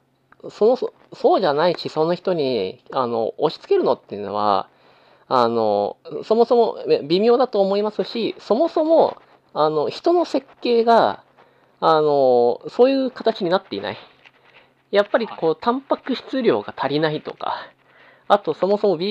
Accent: native